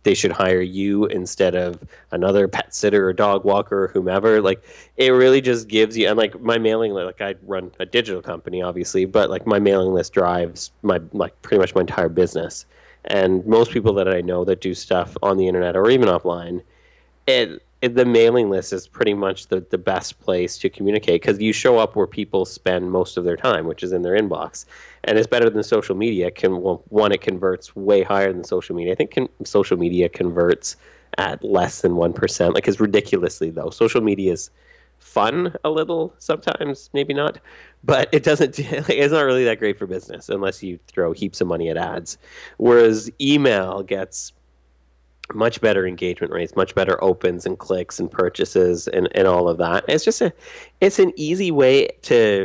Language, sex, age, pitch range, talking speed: English, male, 30-49, 90-130 Hz, 195 wpm